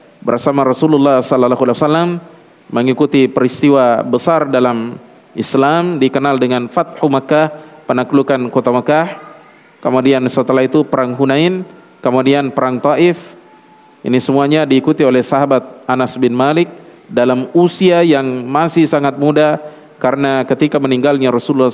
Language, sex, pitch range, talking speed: Indonesian, male, 130-160 Hz, 120 wpm